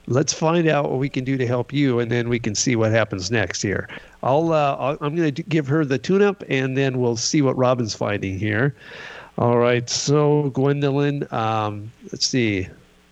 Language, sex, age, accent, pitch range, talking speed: English, male, 50-69, American, 105-140 Hz, 195 wpm